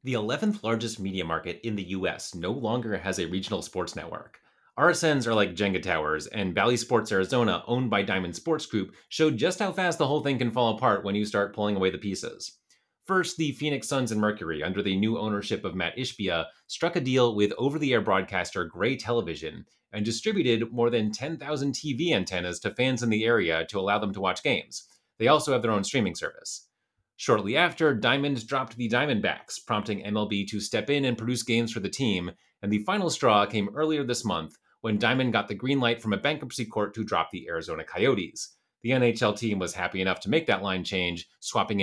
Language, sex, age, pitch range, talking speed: English, male, 30-49, 100-135 Hz, 205 wpm